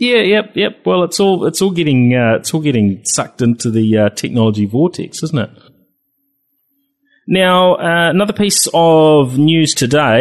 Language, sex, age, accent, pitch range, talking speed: English, male, 30-49, Australian, 105-140 Hz, 165 wpm